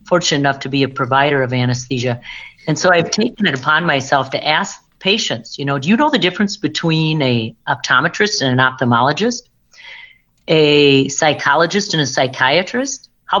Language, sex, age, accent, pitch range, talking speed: English, female, 50-69, American, 145-195 Hz, 165 wpm